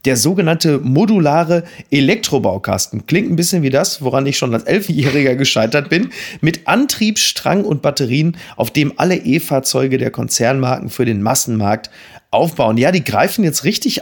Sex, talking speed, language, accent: male, 155 wpm, German, German